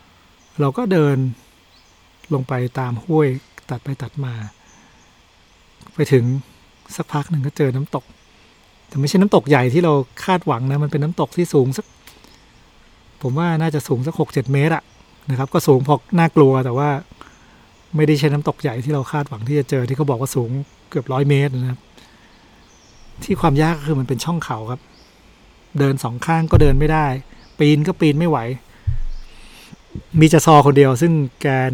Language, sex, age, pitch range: Thai, male, 60-79, 125-150 Hz